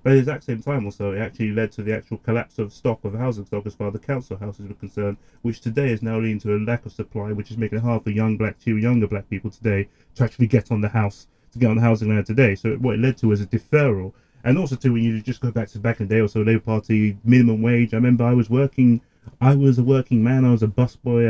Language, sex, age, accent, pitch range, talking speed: English, male, 30-49, British, 105-125 Hz, 290 wpm